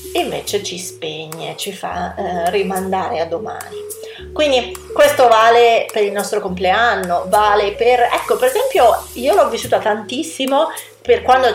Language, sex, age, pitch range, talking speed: Italian, female, 30-49, 185-275 Hz, 145 wpm